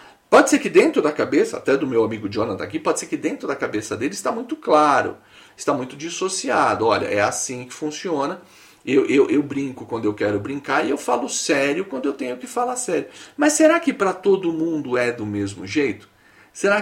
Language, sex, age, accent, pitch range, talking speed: Portuguese, male, 40-59, Brazilian, 125-200 Hz, 210 wpm